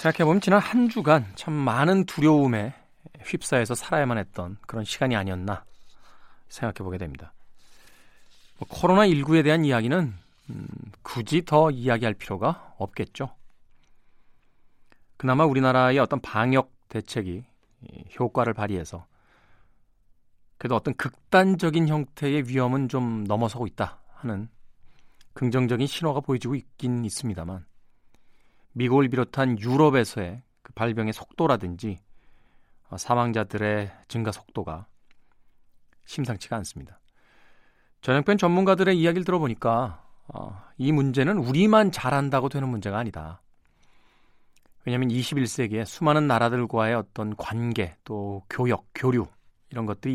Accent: native